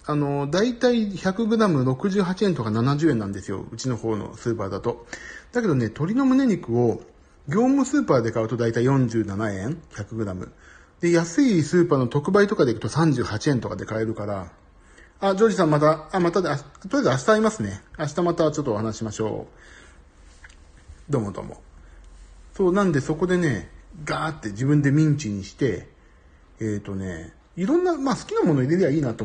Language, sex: Japanese, male